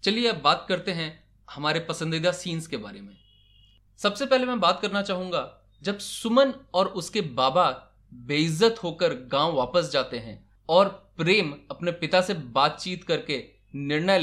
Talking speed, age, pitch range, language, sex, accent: 150 wpm, 20-39, 135-195 Hz, Hindi, male, native